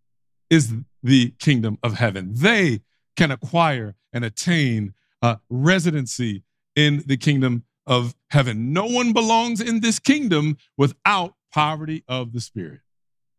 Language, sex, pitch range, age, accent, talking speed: English, male, 125-180 Hz, 50-69, American, 125 wpm